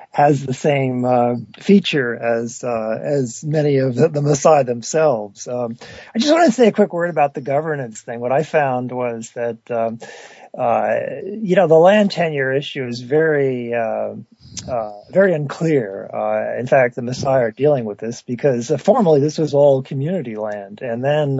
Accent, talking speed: American, 180 wpm